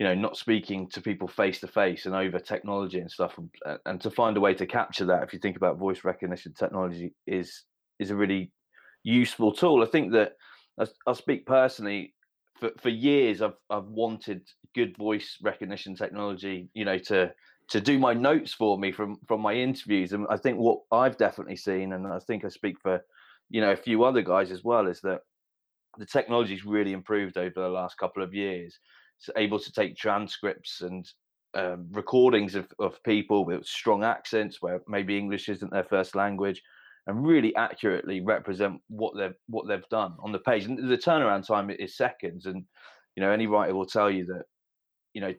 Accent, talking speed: British, 195 wpm